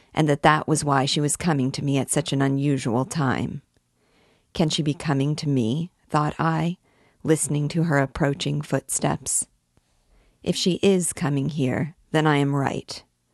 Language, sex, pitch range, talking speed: English, female, 135-160 Hz, 165 wpm